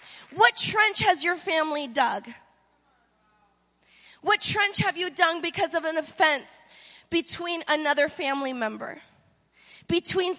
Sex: female